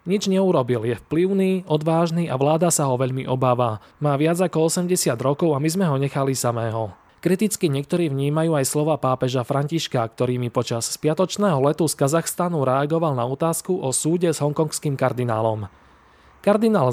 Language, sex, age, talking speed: Slovak, male, 20-39, 160 wpm